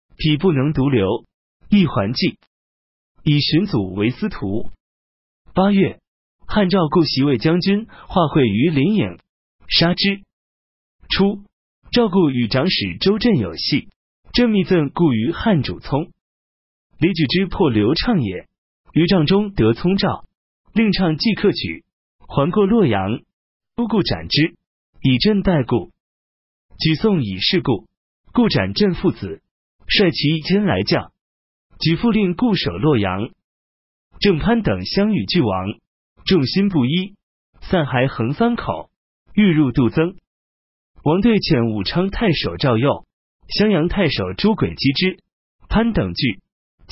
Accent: native